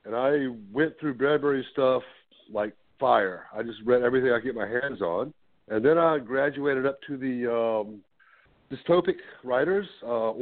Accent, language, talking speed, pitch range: American, English, 165 wpm, 115-155 Hz